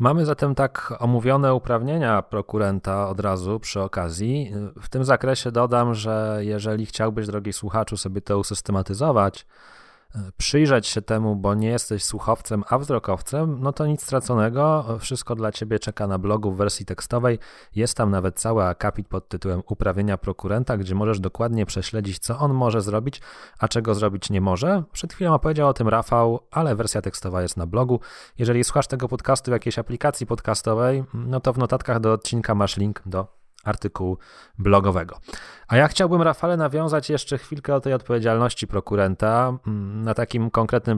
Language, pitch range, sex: Polish, 100-120 Hz, male